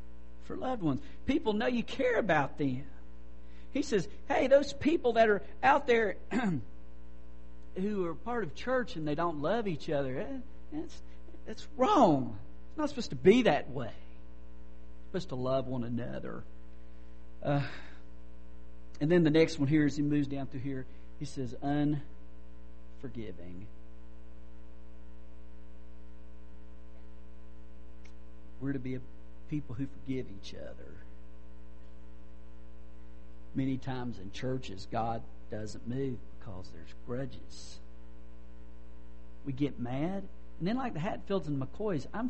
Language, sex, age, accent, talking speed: English, male, 50-69, American, 130 wpm